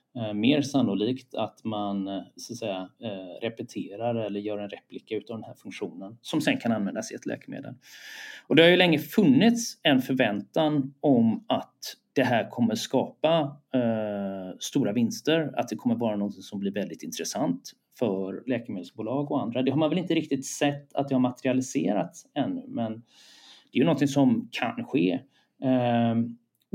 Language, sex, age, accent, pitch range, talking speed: Swedish, male, 30-49, native, 105-155 Hz, 165 wpm